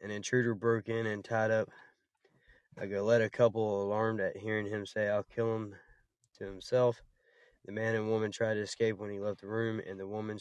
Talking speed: 210 wpm